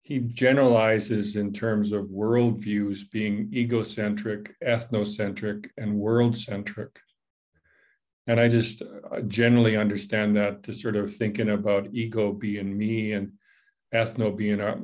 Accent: American